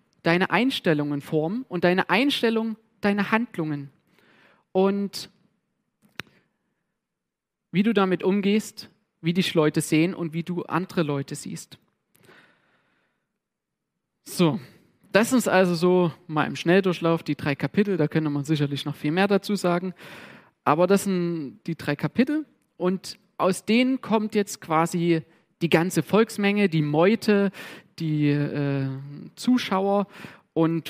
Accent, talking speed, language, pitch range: German, 125 wpm, German, 155-200 Hz